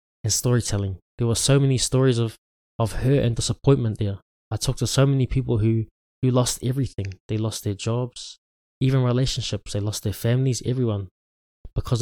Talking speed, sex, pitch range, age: 175 wpm, male, 110-130 Hz, 20-39